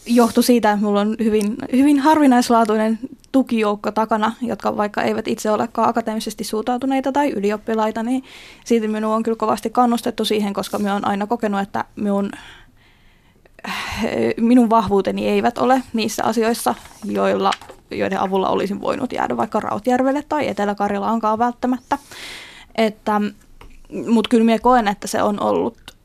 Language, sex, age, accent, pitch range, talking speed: Finnish, female, 20-39, native, 205-240 Hz, 140 wpm